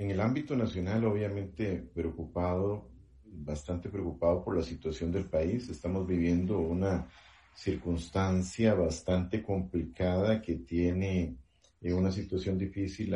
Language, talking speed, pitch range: Spanish, 110 wpm, 85-105 Hz